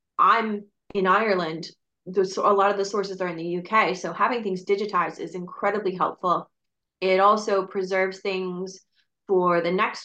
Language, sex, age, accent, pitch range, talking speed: English, female, 20-39, American, 175-210 Hz, 160 wpm